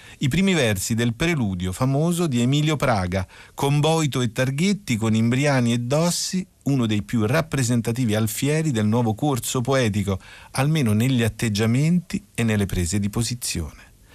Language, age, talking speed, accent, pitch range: Italian, 50-69, 145 wpm, native, 110-150 Hz